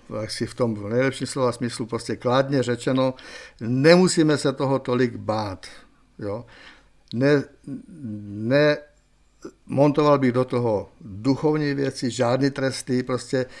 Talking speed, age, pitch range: 115 wpm, 60-79, 115-135 Hz